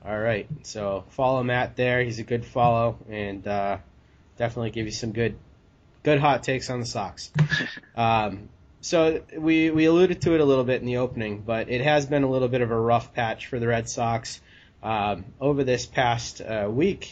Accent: American